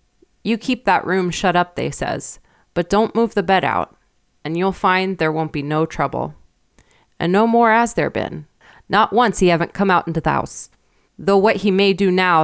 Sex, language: female, English